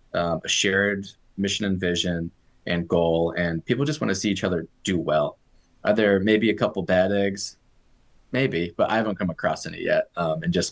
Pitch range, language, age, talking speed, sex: 90-105 Hz, English, 20-39, 200 wpm, male